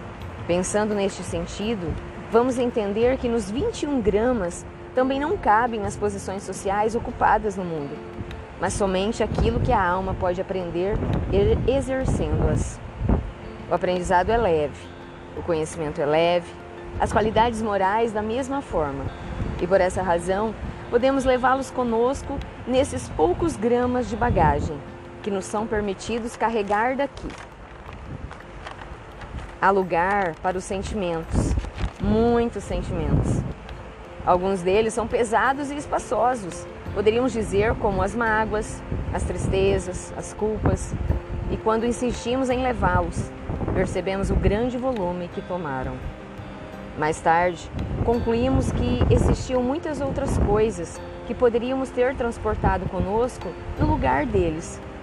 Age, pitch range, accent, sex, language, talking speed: 20-39, 175-240 Hz, Brazilian, female, Portuguese, 120 wpm